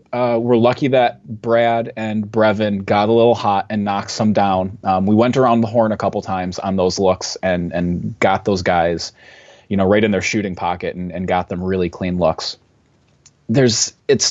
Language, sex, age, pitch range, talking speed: English, male, 30-49, 95-120 Hz, 200 wpm